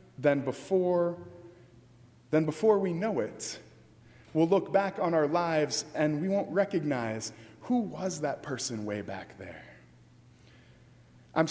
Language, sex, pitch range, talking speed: English, male, 120-195 Hz, 130 wpm